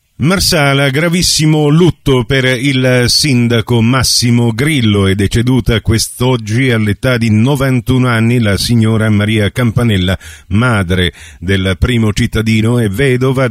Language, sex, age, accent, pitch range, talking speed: Italian, male, 50-69, native, 100-130 Hz, 110 wpm